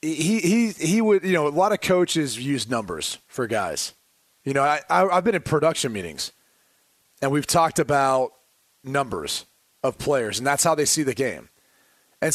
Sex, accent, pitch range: male, American, 145-175 Hz